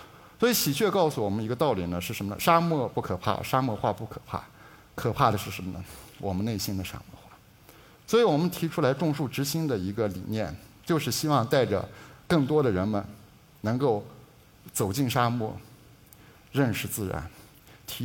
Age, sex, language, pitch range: 60-79, male, Chinese, 100-135 Hz